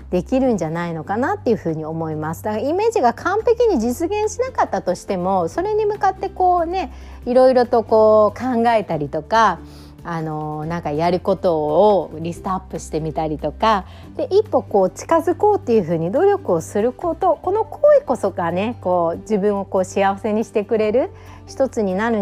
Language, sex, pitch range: Japanese, female, 175-285 Hz